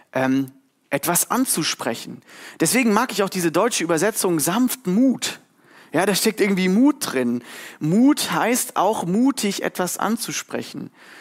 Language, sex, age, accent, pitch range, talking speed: German, male, 30-49, German, 150-220 Hz, 130 wpm